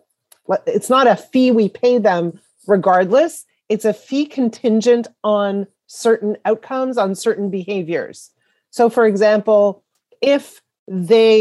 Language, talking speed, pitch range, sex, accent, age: English, 120 wpm, 205-250 Hz, female, American, 40-59